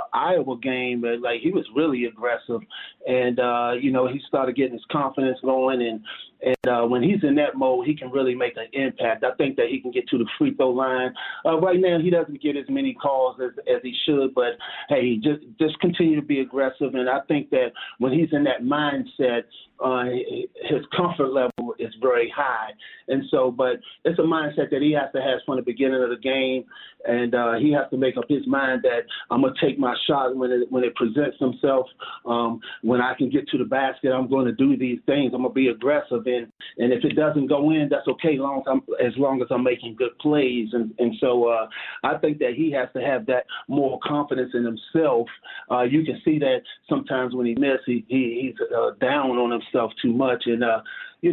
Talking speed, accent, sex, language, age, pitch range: 225 wpm, American, male, English, 30-49, 125-150 Hz